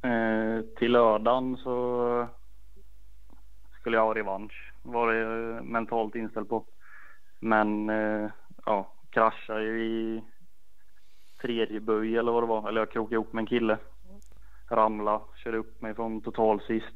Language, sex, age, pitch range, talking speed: Swedish, male, 20-39, 105-115 Hz, 125 wpm